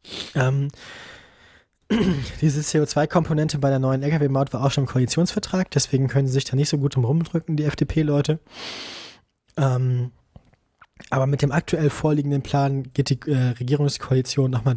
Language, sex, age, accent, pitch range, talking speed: German, male, 20-39, German, 125-150 Hz, 135 wpm